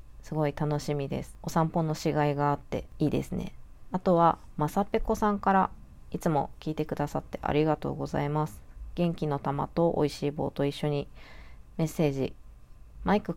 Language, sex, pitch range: Japanese, female, 145-175 Hz